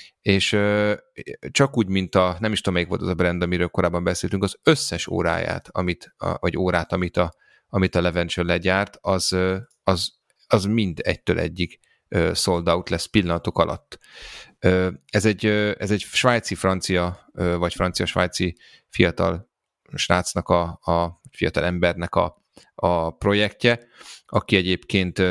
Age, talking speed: 30-49, 135 wpm